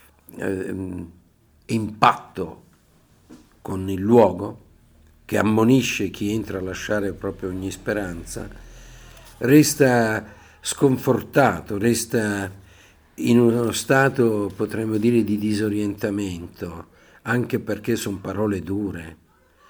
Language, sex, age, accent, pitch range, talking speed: Italian, male, 50-69, native, 95-115 Hz, 85 wpm